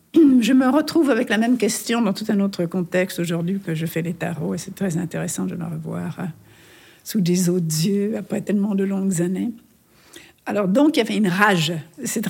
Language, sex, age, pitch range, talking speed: French, female, 60-79, 170-205 Hz, 200 wpm